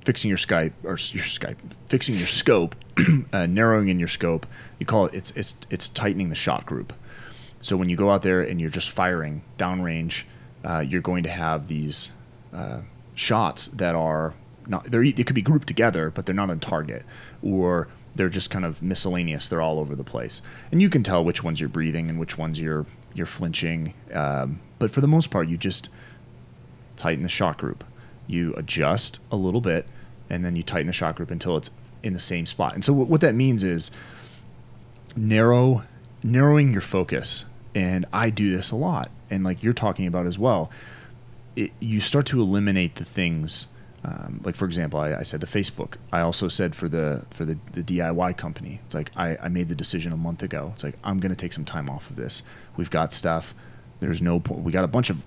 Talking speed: 210 wpm